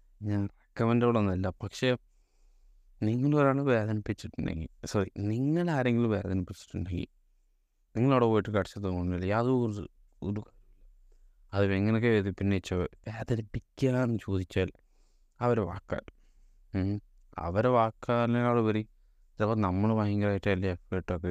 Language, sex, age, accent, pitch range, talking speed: Malayalam, male, 20-39, native, 90-110 Hz, 85 wpm